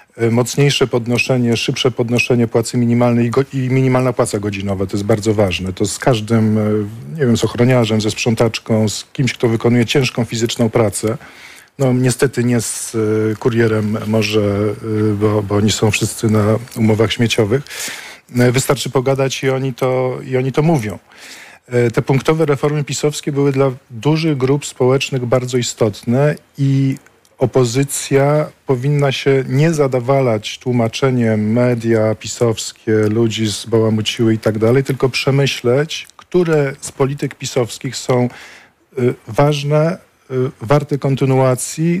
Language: Polish